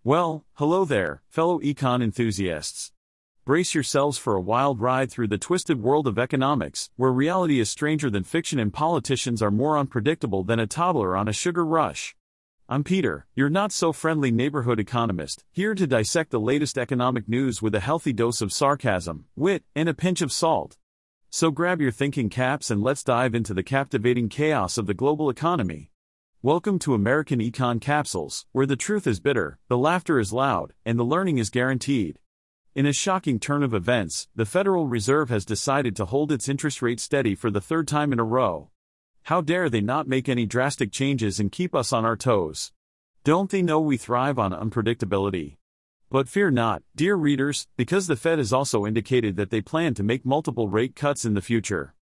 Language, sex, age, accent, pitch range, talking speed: English, male, 40-59, American, 115-150 Hz, 190 wpm